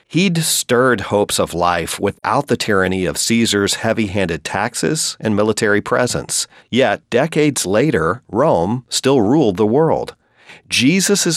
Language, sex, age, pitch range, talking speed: English, male, 40-59, 90-120 Hz, 125 wpm